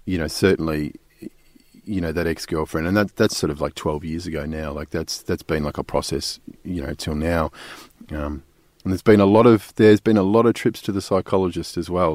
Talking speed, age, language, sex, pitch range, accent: 225 wpm, 30-49, English, male, 85-105 Hz, Australian